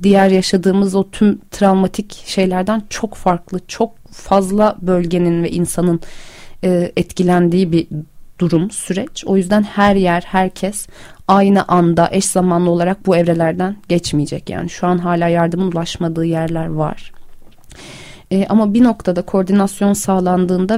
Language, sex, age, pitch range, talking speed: Turkish, female, 30-49, 175-205 Hz, 125 wpm